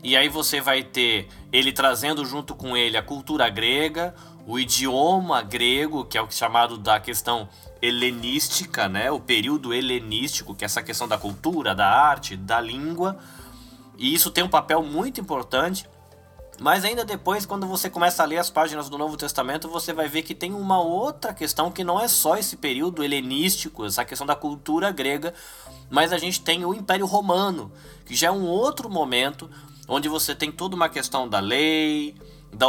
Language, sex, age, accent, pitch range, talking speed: Portuguese, male, 20-39, Brazilian, 130-180 Hz, 180 wpm